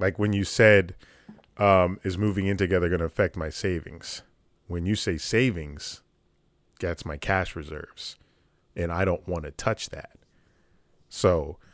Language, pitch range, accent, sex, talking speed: English, 85-100 Hz, American, male, 155 wpm